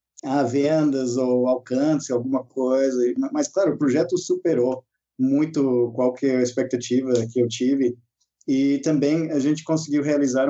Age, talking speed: 20-39, 130 wpm